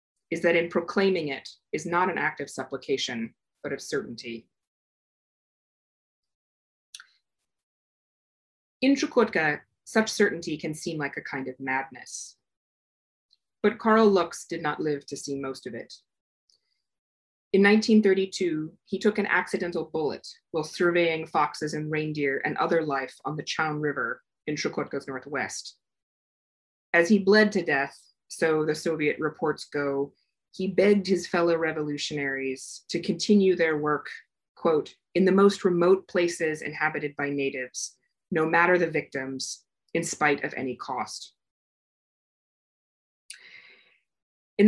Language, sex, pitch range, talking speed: English, female, 145-195 Hz, 130 wpm